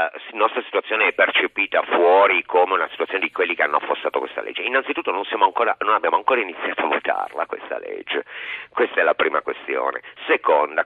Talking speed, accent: 190 wpm, native